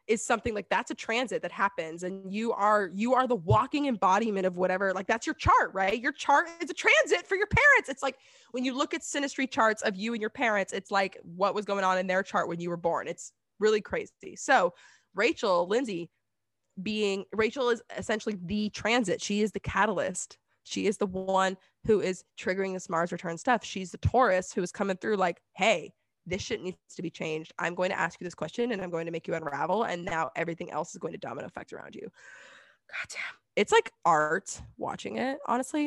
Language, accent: English, American